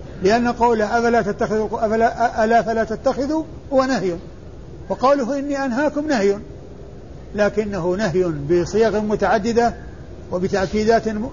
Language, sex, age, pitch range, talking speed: Arabic, male, 50-69, 185-235 Hz, 90 wpm